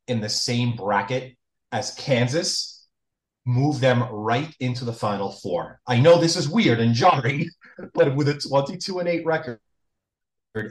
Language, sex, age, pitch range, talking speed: English, male, 30-49, 110-135 Hz, 150 wpm